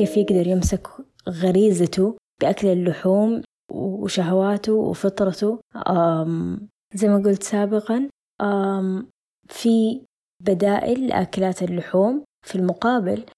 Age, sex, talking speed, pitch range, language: 20-39, female, 80 wpm, 180-210 Hz, Arabic